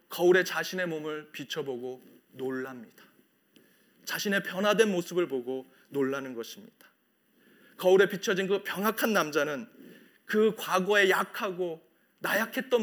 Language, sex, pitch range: Korean, male, 180-245 Hz